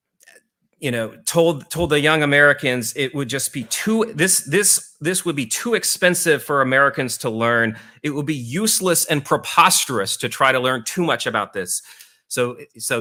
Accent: American